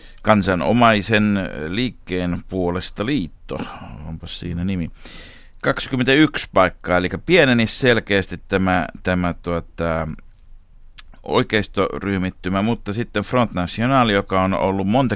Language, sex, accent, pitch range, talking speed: Finnish, male, native, 85-105 Hz, 90 wpm